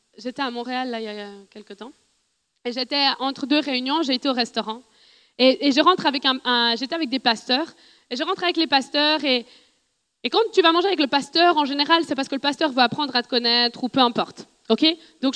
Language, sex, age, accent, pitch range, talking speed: French, female, 20-39, French, 250-330 Hz, 240 wpm